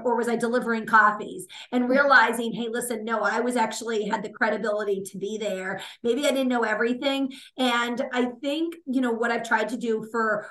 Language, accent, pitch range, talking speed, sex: English, American, 225-265 Hz, 200 wpm, female